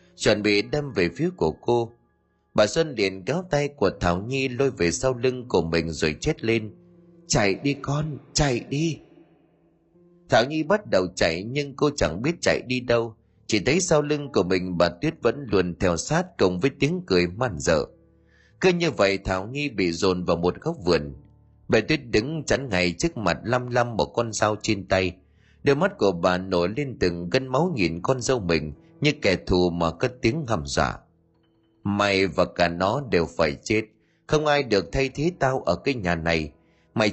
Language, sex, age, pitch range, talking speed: Vietnamese, male, 30-49, 90-145 Hz, 200 wpm